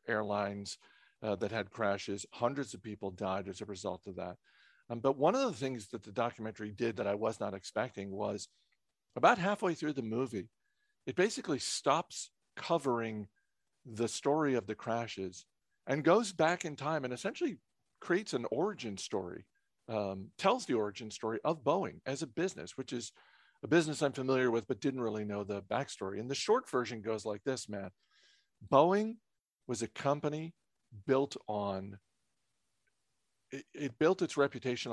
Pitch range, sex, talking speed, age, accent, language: 110-150 Hz, male, 165 wpm, 50-69, American, English